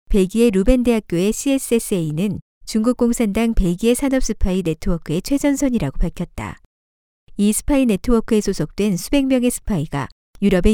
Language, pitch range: Korean, 185-245 Hz